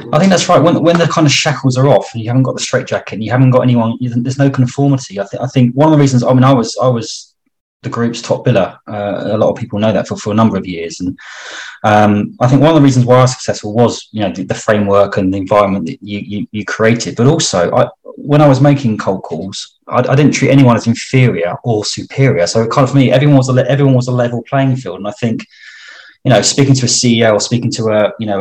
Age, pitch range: 20-39, 110-140 Hz